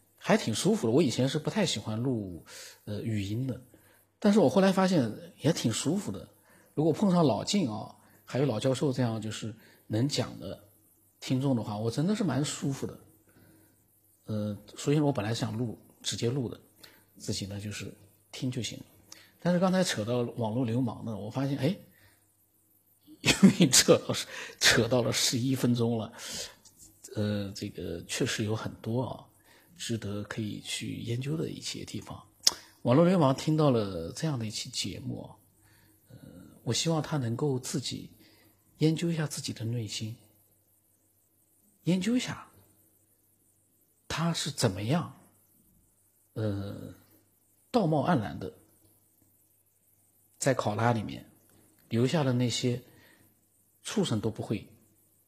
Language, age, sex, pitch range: Chinese, 50-69, male, 105-130 Hz